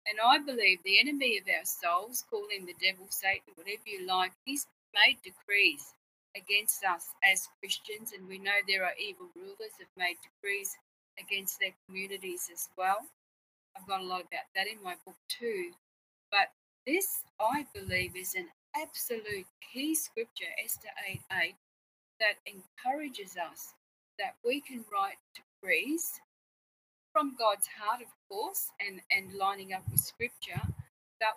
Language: English